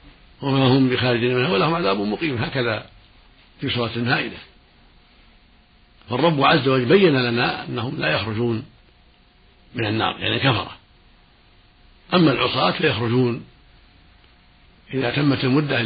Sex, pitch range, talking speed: male, 105-140 Hz, 110 wpm